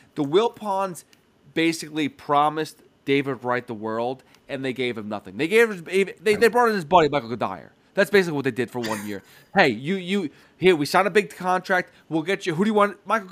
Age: 30-49